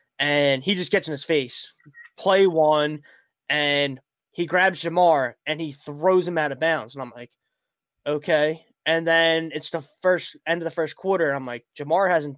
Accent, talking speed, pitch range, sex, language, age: American, 185 wpm, 145-170 Hz, male, English, 20-39